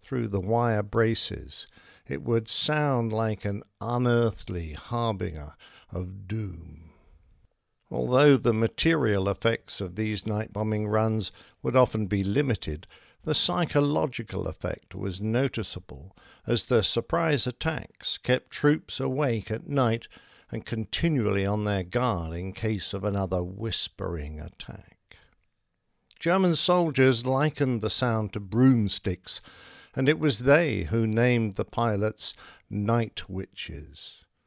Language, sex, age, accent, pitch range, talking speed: English, male, 50-69, British, 100-130 Hz, 120 wpm